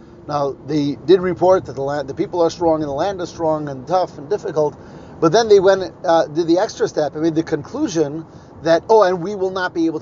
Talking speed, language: 245 wpm, English